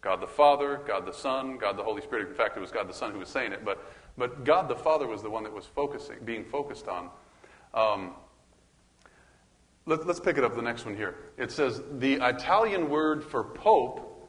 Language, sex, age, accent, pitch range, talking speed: English, male, 30-49, American, 125-155 Hz, 220 wpm